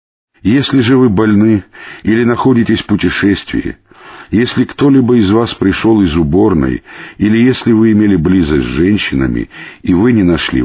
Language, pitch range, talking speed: Russian, 85-115 Hz, 145 wpm